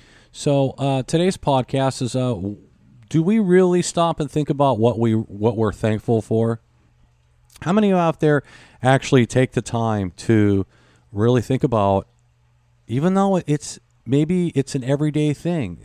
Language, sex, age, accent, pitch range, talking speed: English, male, 40-59, American, 100-140 Hz, 155 wpm